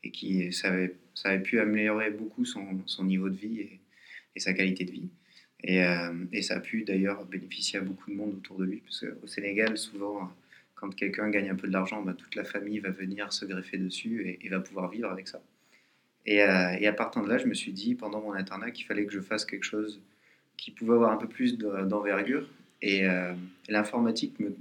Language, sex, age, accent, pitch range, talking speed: French, male, 20-39, French, 95-110 Hz, 225 wpm